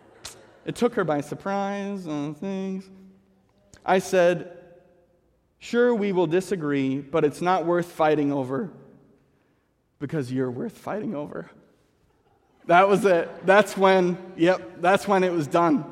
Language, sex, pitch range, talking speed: English, male, 140-175 Hz, 130 wpm